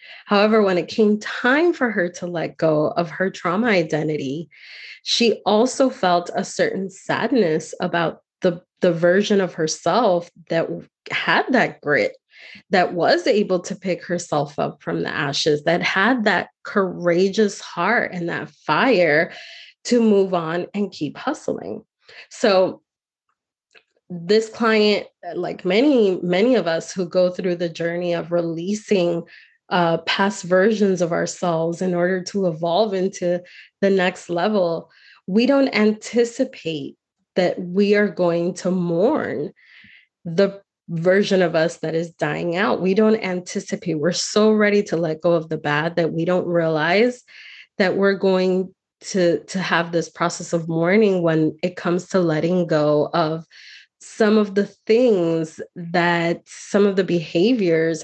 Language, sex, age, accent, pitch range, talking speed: English, female, 20-39, American, 170-205 Hz, 145 wpm